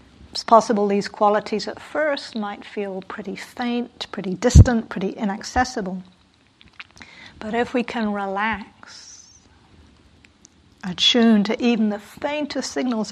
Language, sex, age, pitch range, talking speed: English, female, 50-69, 200-235 Hz, 115 wpm